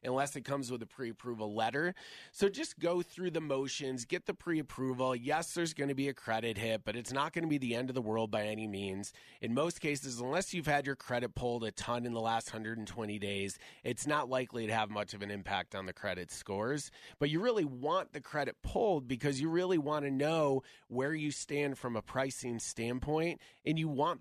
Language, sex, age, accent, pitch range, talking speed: English, male, 30-49, American, 120-150 Hz, 225 wpm